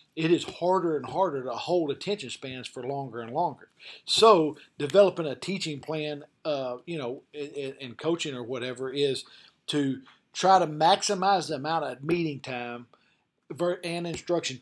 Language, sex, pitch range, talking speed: English, male, 130-160 Hz, 150 wpm